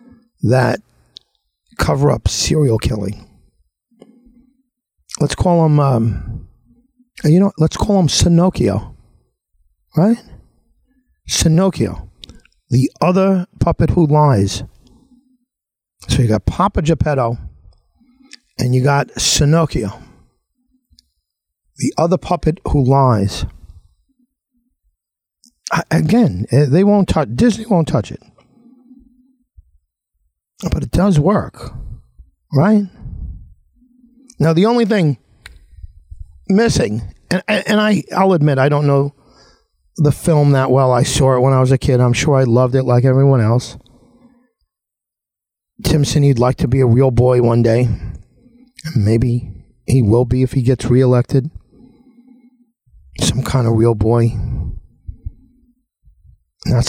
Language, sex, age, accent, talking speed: English, male, 50-69, American, 110 wpm